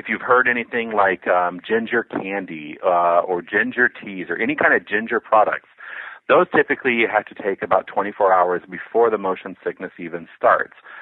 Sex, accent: male, American